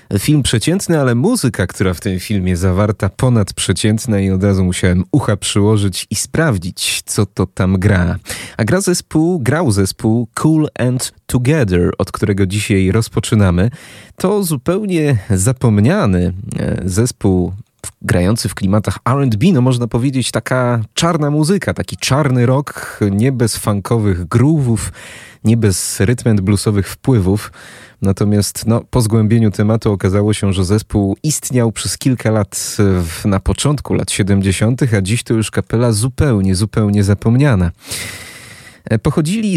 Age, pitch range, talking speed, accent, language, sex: 30-49, 100-125 Hz, 135 wpm, native, Polish, male